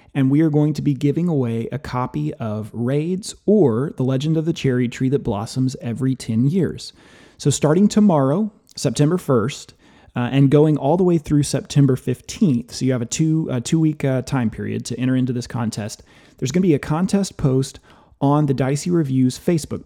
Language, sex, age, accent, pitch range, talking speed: English, male, 30-49, American, 130-155 Hz, 195 wpm